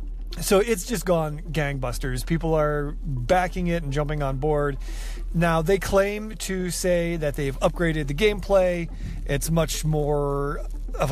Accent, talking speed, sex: American, 145 wpm, male